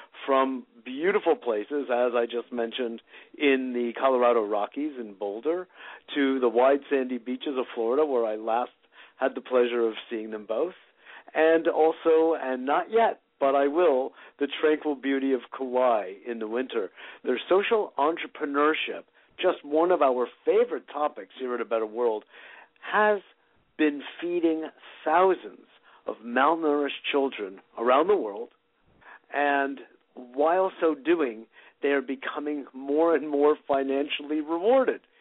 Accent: American